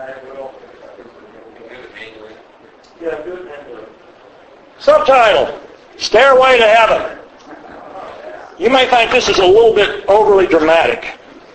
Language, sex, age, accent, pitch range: English, male, 60-79, American, 155-220 Hz